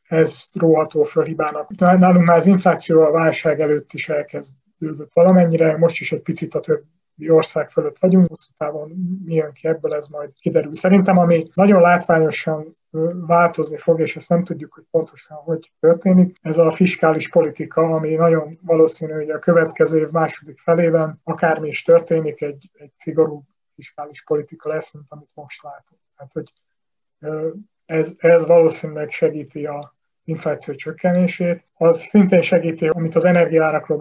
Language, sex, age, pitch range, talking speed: Hungarian, male, 30-49, 150-170 Hz, 150 wpm